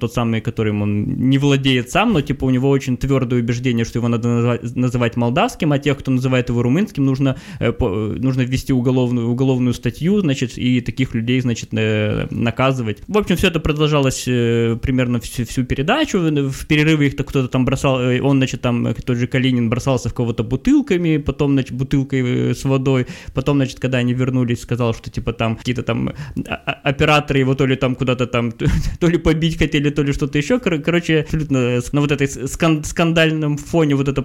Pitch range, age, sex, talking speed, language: 130-160 Hz, 20-39, male, 180 wpm, Russian